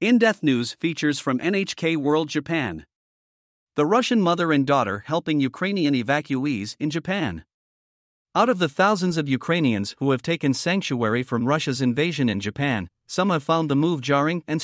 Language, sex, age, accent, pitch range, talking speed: English, male, 50-69, American, 130-165 Hz, 160 wpm